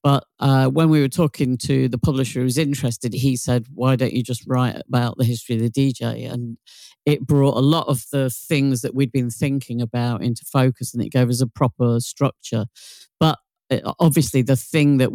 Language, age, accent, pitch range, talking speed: English, 50-69, British, 125-140 Hz, 205 wpm